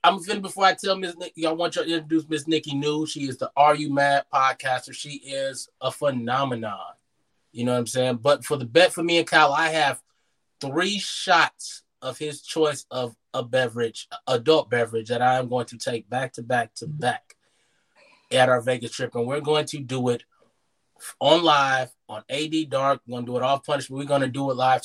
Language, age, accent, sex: English, 20-39, American, male